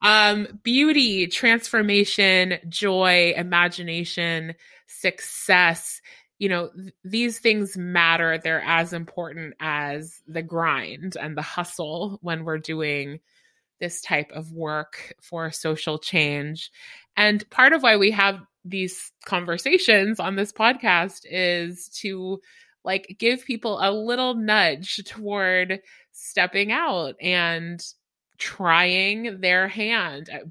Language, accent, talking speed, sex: English, American, 110 wpm, female